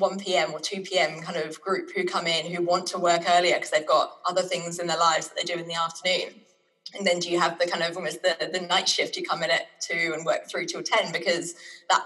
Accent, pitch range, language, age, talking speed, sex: British, 175-195 Hz, English, 20-39, 265 wpm, female